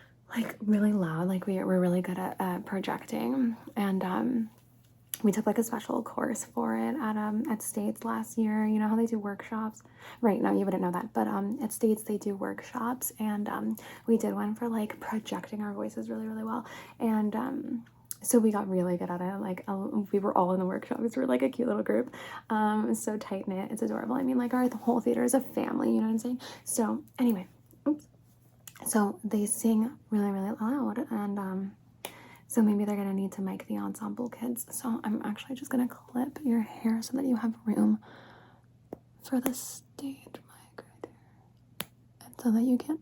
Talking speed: 205 wpm